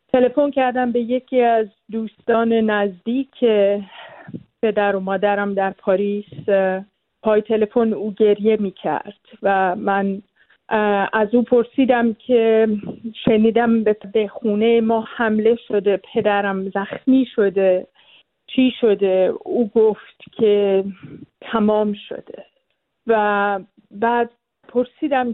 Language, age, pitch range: Persian, 50-69, 200-230 Hz